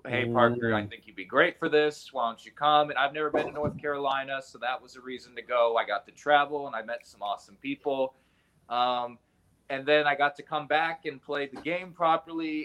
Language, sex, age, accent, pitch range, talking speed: English, male, 20-39, American, 115-150 Hz, 235 wpm